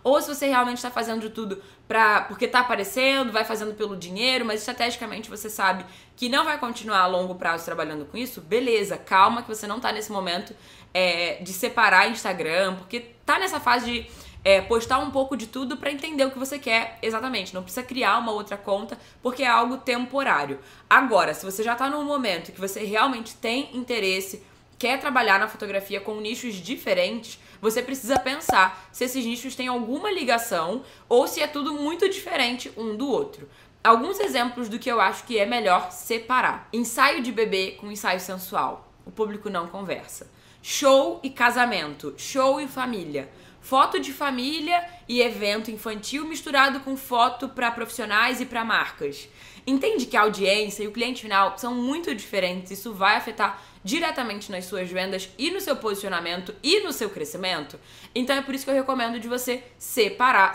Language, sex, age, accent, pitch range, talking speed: Portuguese, female, 10-29, Brazilian, 200-260 Hz, 180 wpm